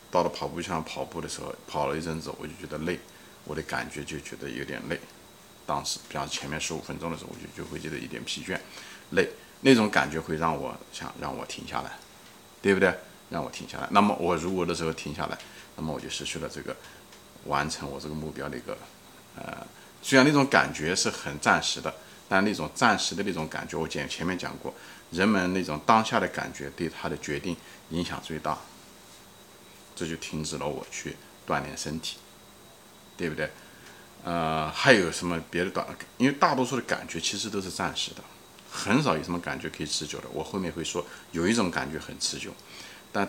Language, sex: Chinese, male